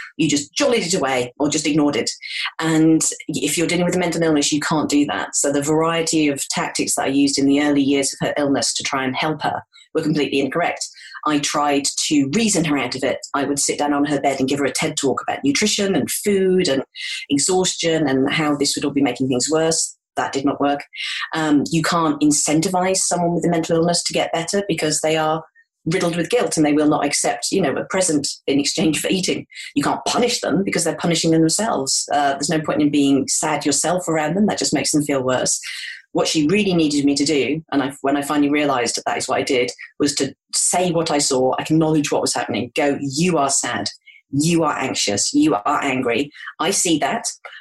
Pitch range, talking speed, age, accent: 145-170 Hz, 230 wpm, 30-49, British